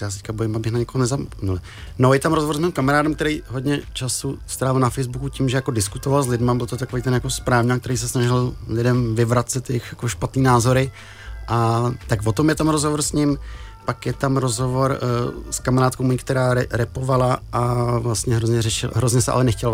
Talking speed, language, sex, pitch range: 205 wpm, Czech, male, 110-125 Hz